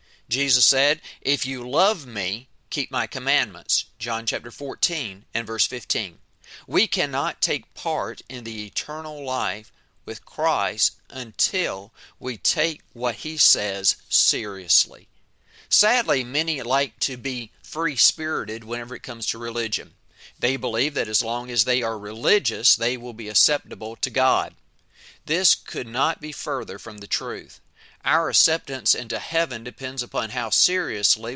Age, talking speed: 40-59, 140 wpm